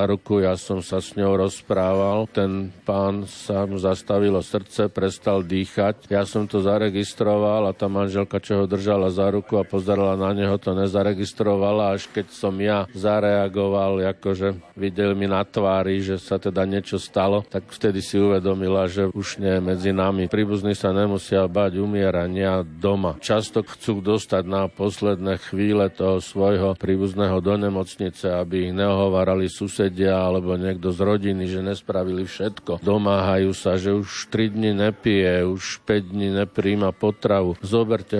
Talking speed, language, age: 155 wpm, Slovak, 50-69